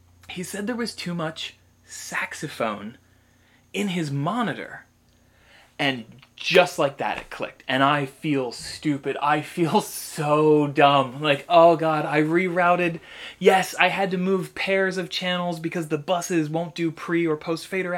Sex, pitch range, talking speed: male, 130-170 Hz, 150 wpm